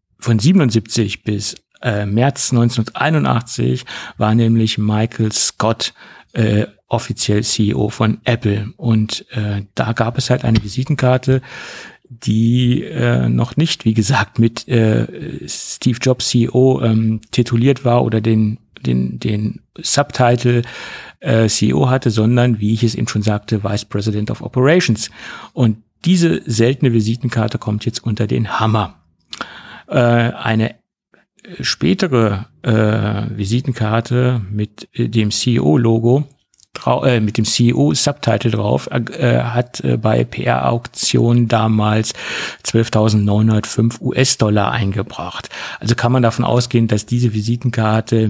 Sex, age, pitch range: male, 50-69, 105-120 Hz